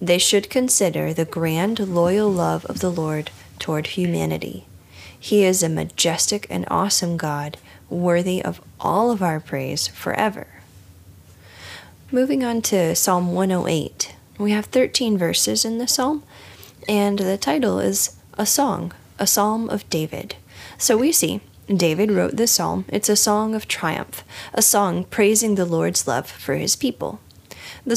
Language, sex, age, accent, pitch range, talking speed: English, female, 10-29, American, 140-205 Hz, 150 wpm